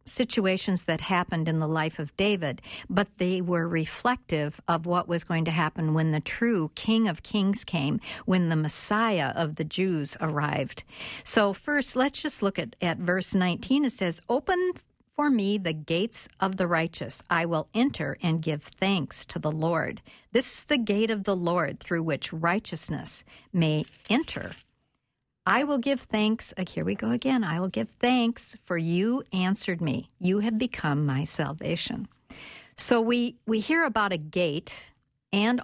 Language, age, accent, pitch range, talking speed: English, 50-69, American, 160-220 Hz, 170 wpm